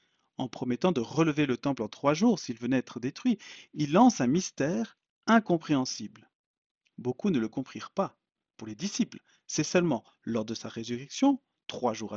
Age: 40-59